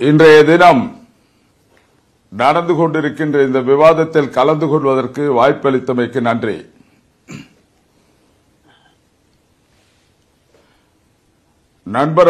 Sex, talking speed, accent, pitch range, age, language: male, 55 wpm, native, 145-180 Hz, 50-69, Tamil